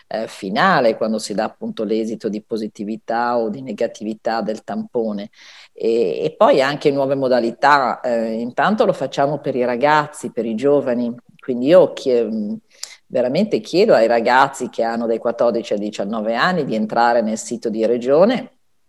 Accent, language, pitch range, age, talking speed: native, Italian, 115-135 Hz, 40-59, 155 wpm